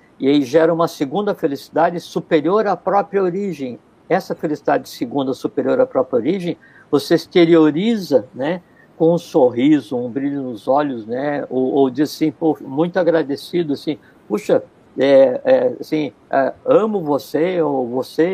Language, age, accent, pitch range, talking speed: Portuguese, 60-79, Brazilian, 140-180 Hz, 145 wpm